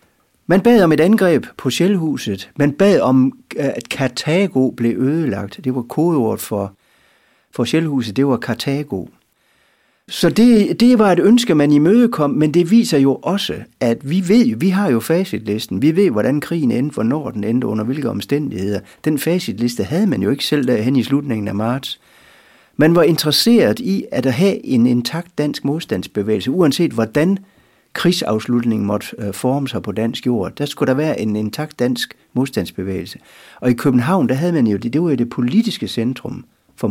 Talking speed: 180 wpm